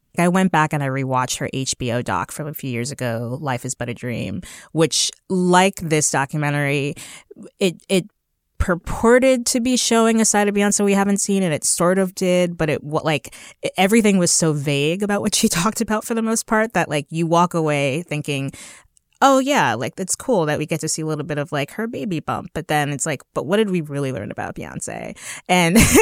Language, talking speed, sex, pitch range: English, 220 wpm, female, 145-200 Hz